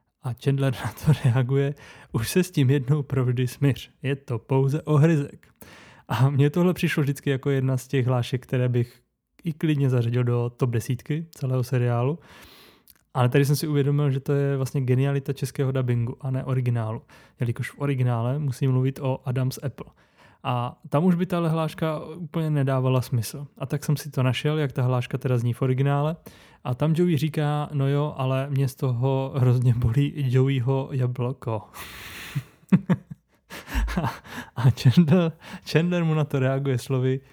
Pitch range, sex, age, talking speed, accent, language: 125-145 Hz, male, 20-39, 165 wpm, native, Czech